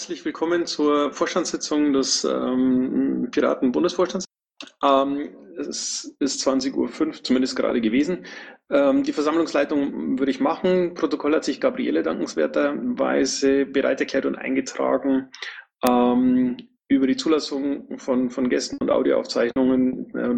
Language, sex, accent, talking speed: German, male, German, 120 wpm